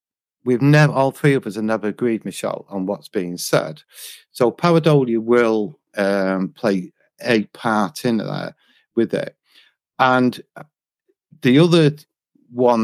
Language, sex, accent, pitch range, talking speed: English, male, British, 100-130 Hz, 135 wpm